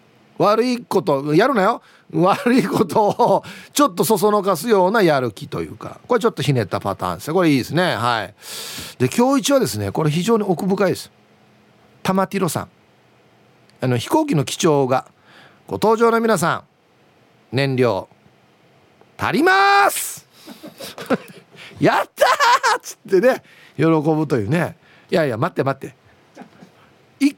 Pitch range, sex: 150-235 Hz, male